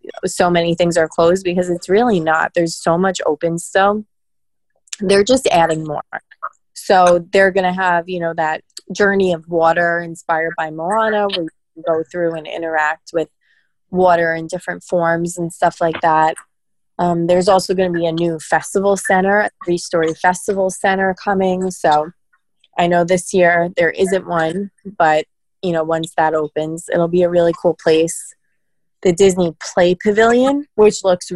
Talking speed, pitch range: 170 wpm, 170-200 Hz